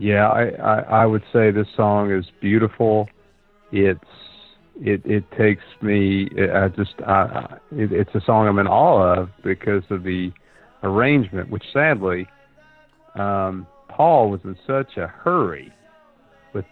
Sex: male